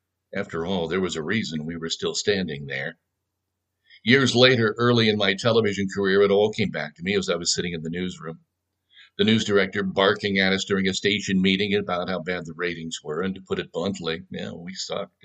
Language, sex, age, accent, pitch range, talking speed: English, male, 60-79, American, 95-105 Hz, 215 wpm